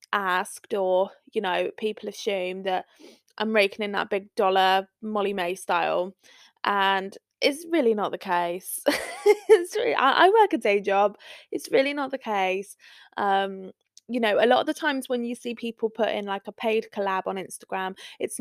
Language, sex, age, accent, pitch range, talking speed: English, female, 20-39, British, 195-255 Hz, 175 wpm